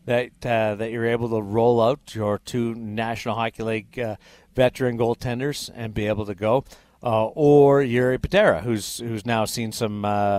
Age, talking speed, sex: 50-69, 180 wpm, male